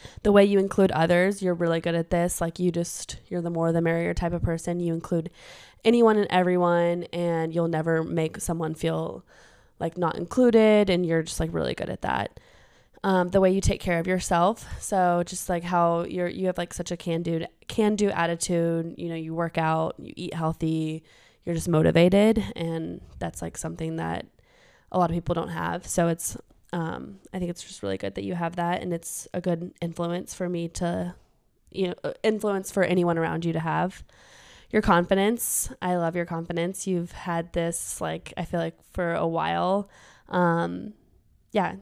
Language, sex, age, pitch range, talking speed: English, female, 20-39, 165-180 Hz, 195 wpm